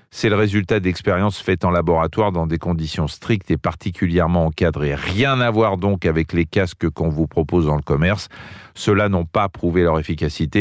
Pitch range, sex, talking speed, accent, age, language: 85-110 Hz, male, 185 wpm, French, 40-59, French